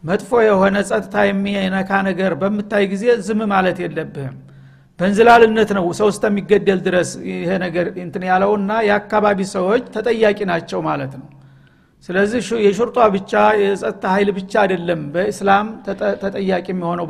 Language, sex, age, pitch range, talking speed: Amharic, male, 50-69, 190-220 Hz, 115 wpm